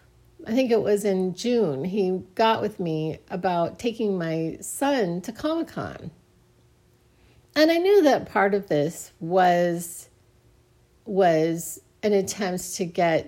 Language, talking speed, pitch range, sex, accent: English, 130 wpm, 165-220 Hz, female, American